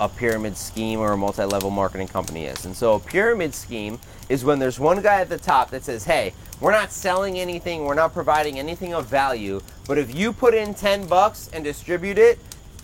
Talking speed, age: 210 wpm, 30-49